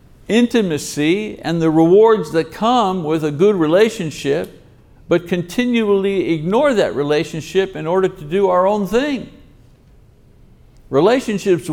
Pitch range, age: 155-200 Hz, 60-79